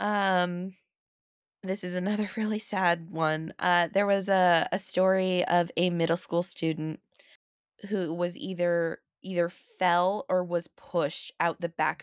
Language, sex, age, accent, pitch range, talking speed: English, female, 20-39, American, 160-195 Hz, 145 wpm